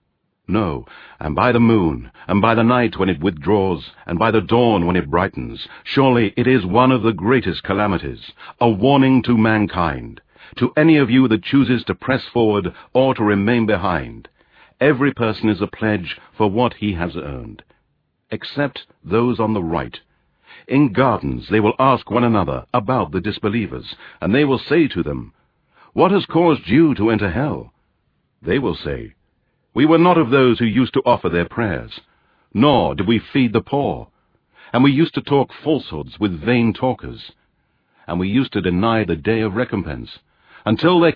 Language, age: English, 60-79